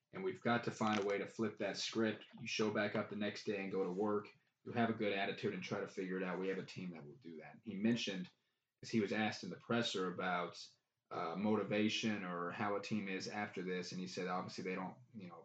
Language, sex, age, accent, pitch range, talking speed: English, male, 20-39, American, 100-115 Hz, 265 wpm